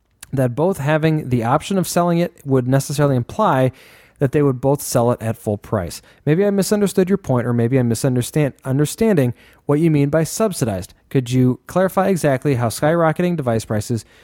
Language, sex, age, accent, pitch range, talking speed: English, male, 30-49, American, 125-165 Hz, 180 wpm